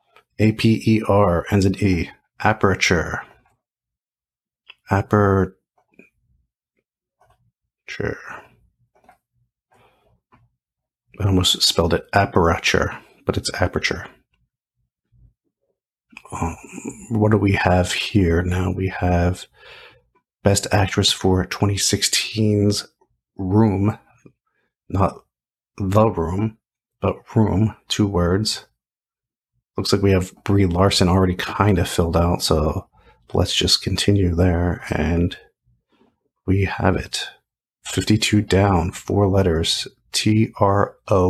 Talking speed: 85 wpm